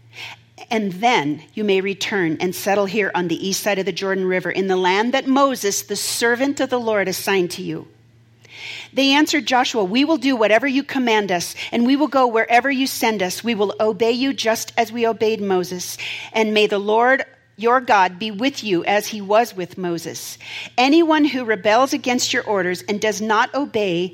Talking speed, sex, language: 200 wpm, female, English